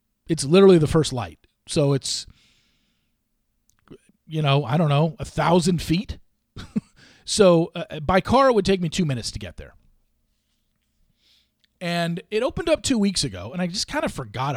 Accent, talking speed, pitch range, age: American, 170 wpm, 135-200 Hz, 40-59